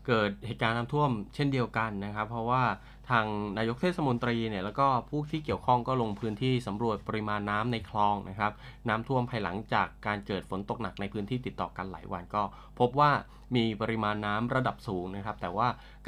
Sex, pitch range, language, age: male, 100-125 Hz, Thai, 20-39